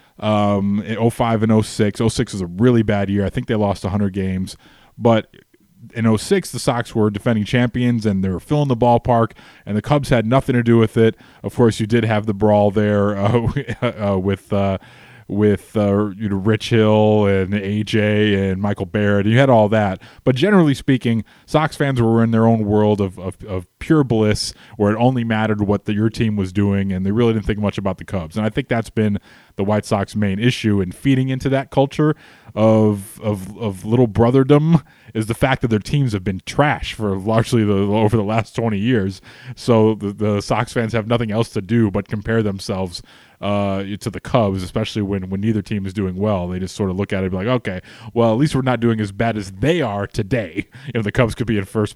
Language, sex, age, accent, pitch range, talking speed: English, male, 20-39, American, 100-120 Hz, 225 wpm